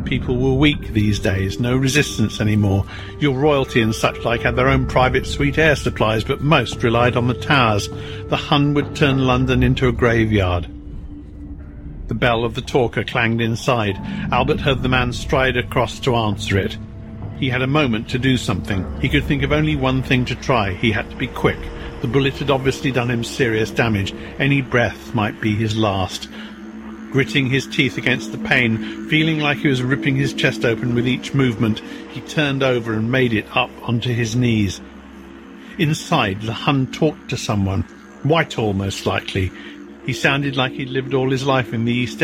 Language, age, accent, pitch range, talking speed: English, 50-69, British, 110-135 Hz, 190 wpm